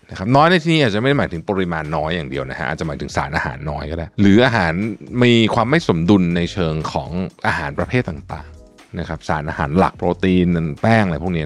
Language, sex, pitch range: Thai, male, 80-110 Hz